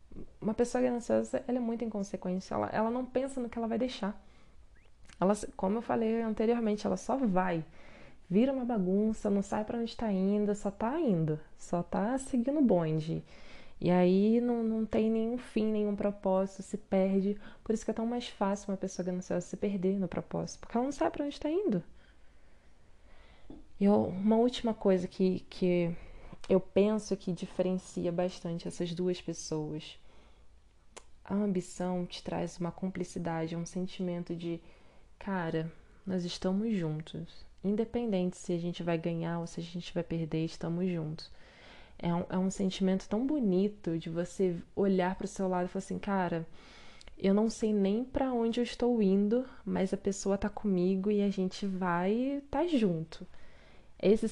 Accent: Brazilian